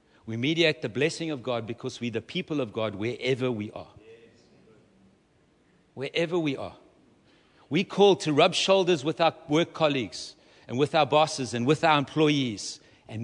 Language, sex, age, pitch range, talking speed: English, male, 60-79, 130-190 Hz, 165 wpm